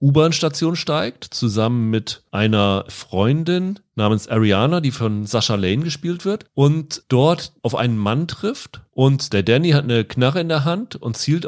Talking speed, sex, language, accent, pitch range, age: 160 wpm, male, German, German, 105-145 Hz, 40-59